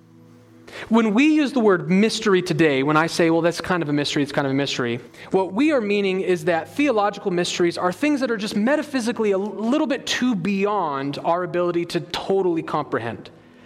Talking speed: 200 wpm